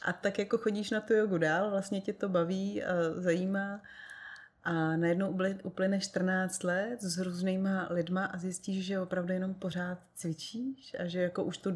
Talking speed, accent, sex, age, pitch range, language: 170 wpm, native, female, 30-49, 175-205 Hz, Czech